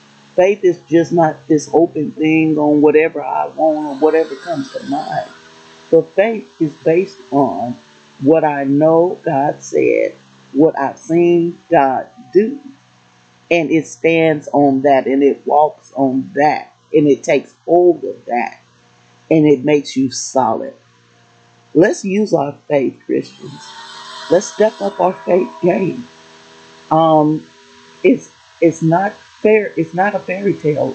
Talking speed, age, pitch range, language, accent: 140 wpm, 40-59, 135-190 Hz, English, American